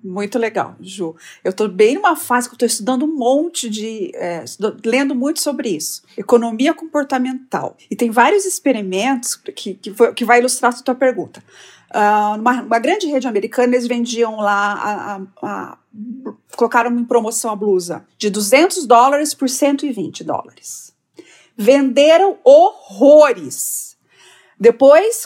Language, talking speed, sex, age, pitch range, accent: Portuguese, 125 wpm, female, 40-59, 230-325 Hz, Brazilian